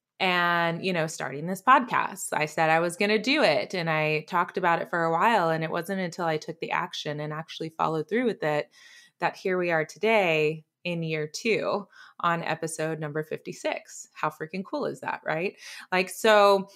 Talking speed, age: 200 wpm, 20-39